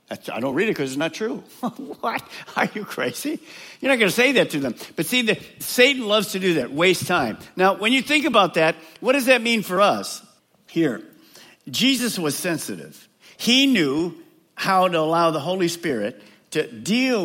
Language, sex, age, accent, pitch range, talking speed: English, male, 50-69, American, 145-220 Hz, 195 wpm